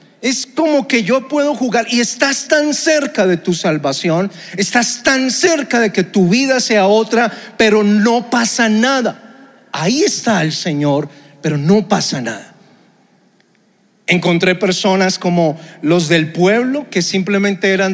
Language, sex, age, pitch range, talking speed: Spanish, male, 40-59, 175-235 Hz, 145 wpm